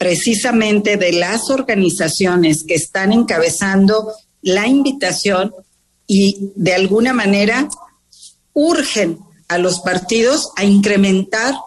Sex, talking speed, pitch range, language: female, 100 wpm, 190-235 Hz, Spanish